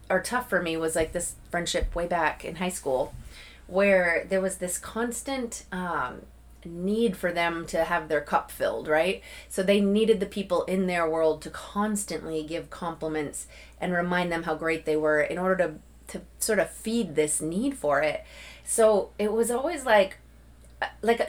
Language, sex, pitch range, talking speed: English, female, 165-230 Hz, 180 wpm